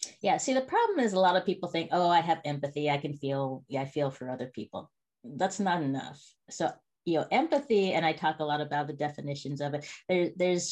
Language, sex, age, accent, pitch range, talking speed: English, female, 30-49, American, 145-195 Hz, 235 wpm